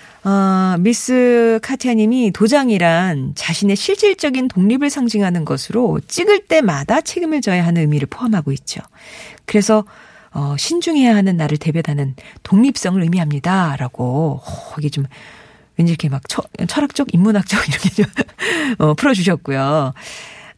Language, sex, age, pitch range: Korean, female, 40-59, 165-240 Hz